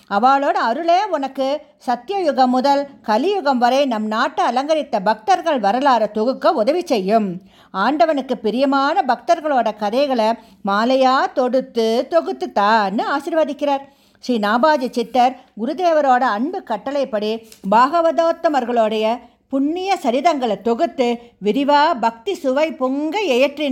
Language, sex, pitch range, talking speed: English, female, 230-325 Hz, 90 wpm